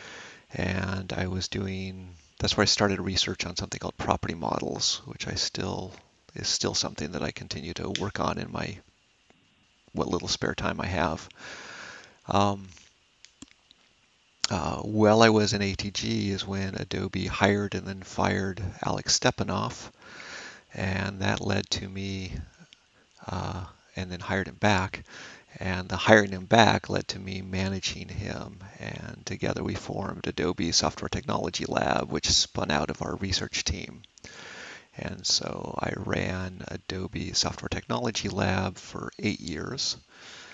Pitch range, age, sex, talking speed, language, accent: 95-105 Hz, 40-59, male, 145 wpm, English, American